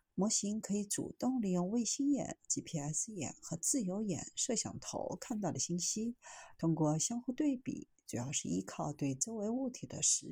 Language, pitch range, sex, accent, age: Chinese, 160-240 Hz, female, native, 50-69